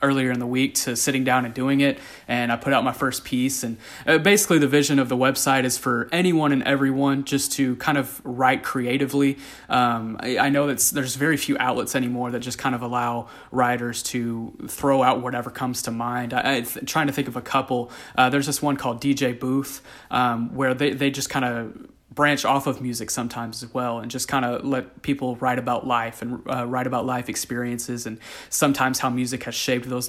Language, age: English, 30-49